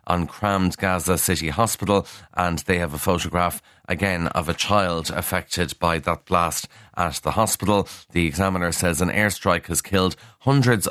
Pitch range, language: 90-105 Hz, English